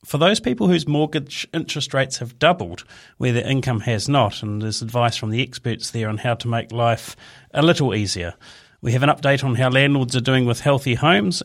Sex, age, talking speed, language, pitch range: male, 40-59, 215 wpm, English, 120-155 Hz